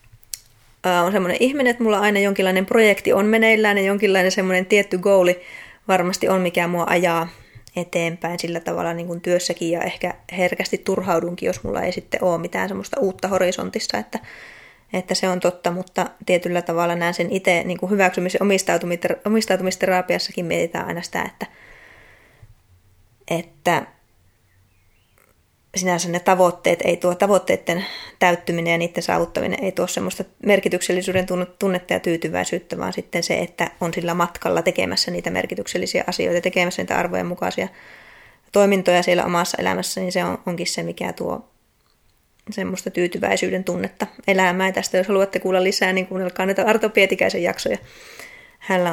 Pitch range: 170-190 Hz